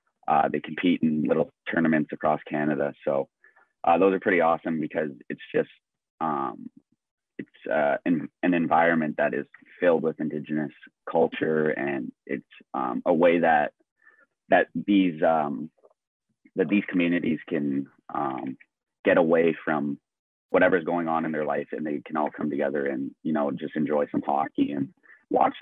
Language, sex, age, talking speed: English, male, 30-49, 155 wpm